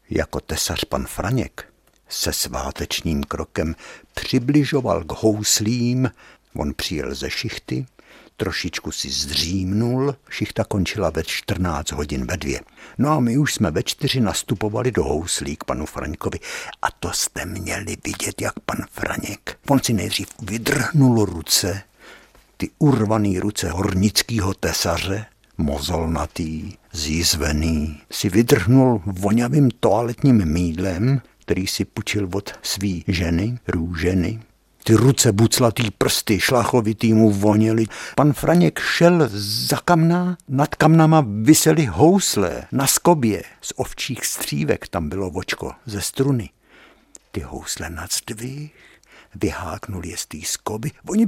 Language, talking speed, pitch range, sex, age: Czech, 125 wpm, 90-130 Hz, male, 60-79